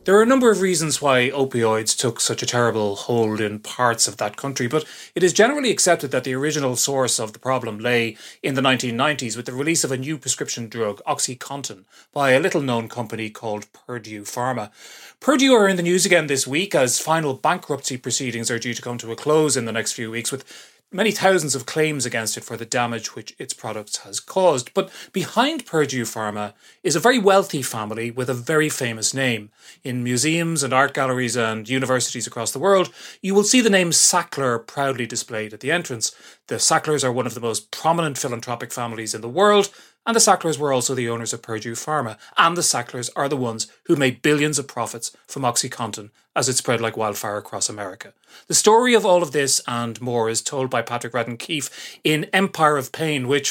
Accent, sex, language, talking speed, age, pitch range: Irish, male, English, 210 wpm, 30-49, 120-155 Hz